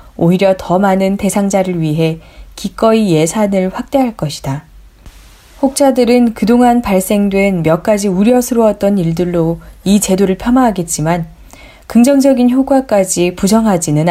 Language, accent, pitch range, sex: Korean, native, 170-230 Hz, female